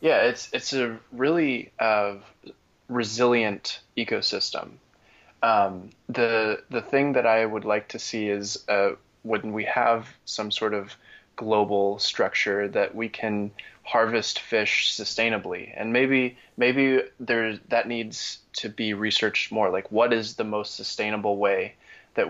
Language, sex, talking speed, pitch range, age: English, male, 140 wpm, 100-115 Hz, 20-39